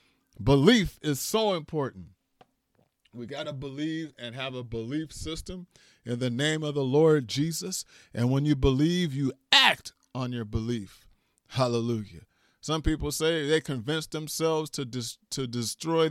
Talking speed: 150 wpm